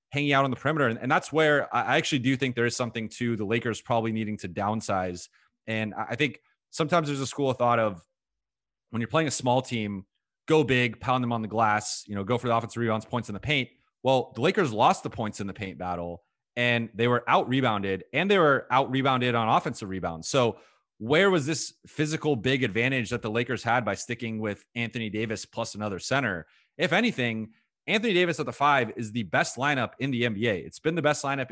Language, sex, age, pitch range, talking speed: English, male, 30-49, 110-145 Hz, 225 wpm